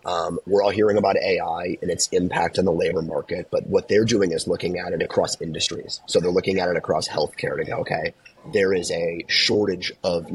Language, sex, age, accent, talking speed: English, male, 30-49, American, 220 wpm